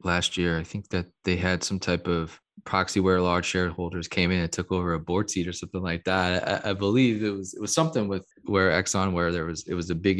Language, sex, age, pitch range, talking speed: English, male, 20-39, 90-105 Hz, 260 wpm